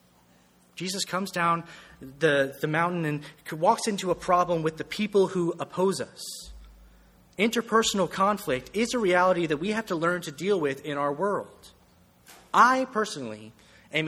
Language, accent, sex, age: English, American, male, 30-49